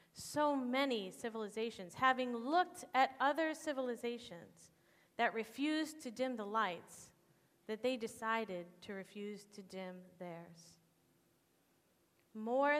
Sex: female